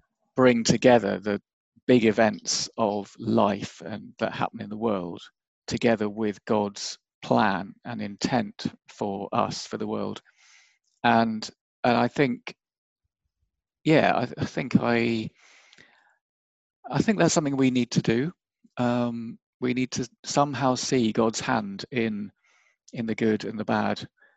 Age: 40-59